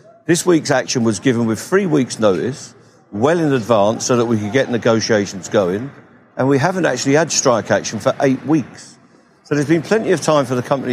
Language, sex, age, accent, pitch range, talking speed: English, male, 50-69, British, 115-155 Hz, 210 wpm